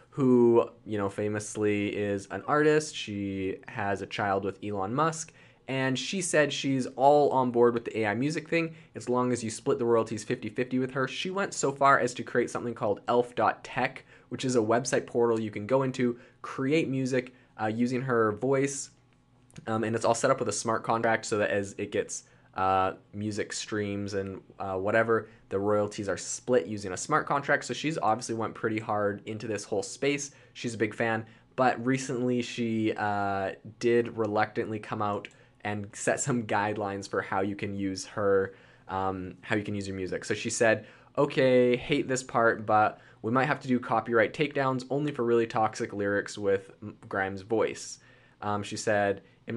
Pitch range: 105-130 Hz